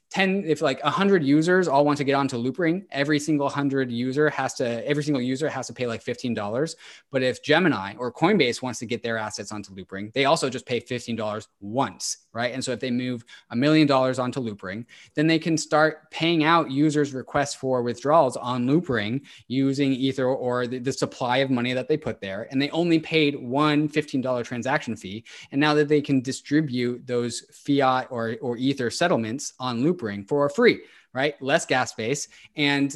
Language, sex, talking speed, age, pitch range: English, male, 195 wpm, 20-39, 120-150 Hz